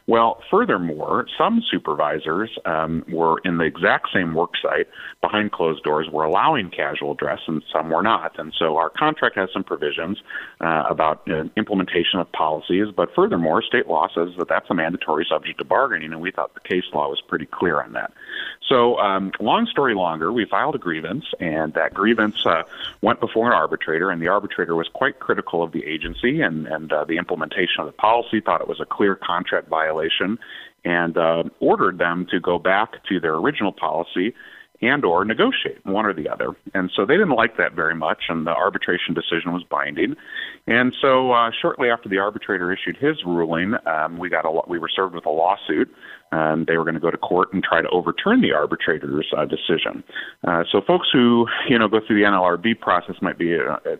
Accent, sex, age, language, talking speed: American, male, 40-59, English, 205 wpm